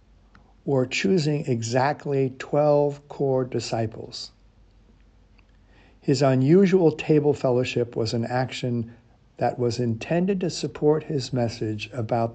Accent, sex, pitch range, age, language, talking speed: American, male, 110-145 Hz, 60-79, English, 100 wpm